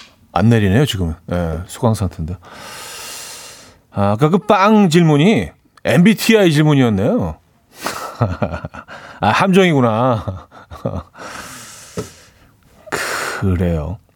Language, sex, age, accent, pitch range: Korean, male, 40-59, native, 100-150 Hz